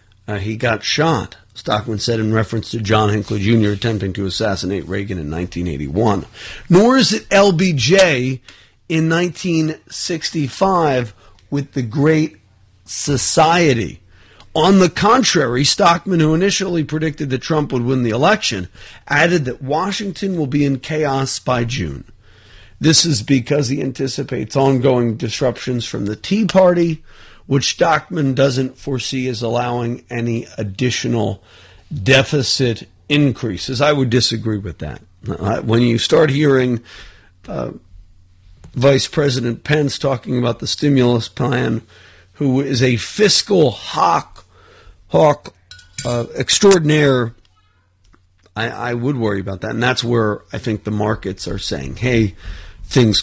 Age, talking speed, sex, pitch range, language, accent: 50-69, 130 wpm, male, 105-145 Hz, English, American